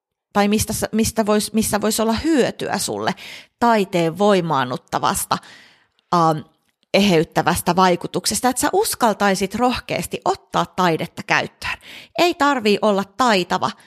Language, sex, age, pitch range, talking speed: Finnish, female, 30-49, 175-225 Hz, 110 wpm